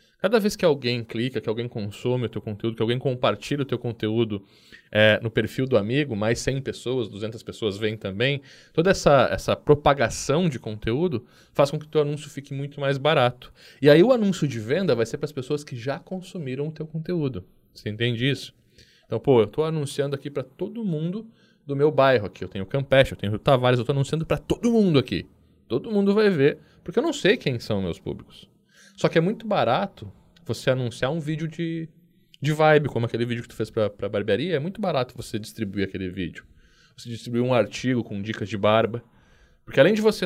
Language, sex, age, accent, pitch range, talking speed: Portuguese, male, 20-39, Brazilian, 110-155 Hz, 215 wpm